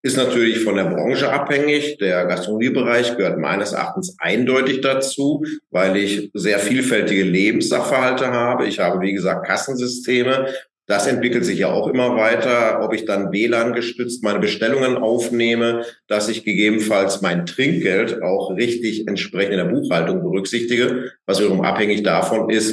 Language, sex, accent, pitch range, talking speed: German, male, German, 105-130 Hz, 145 wpm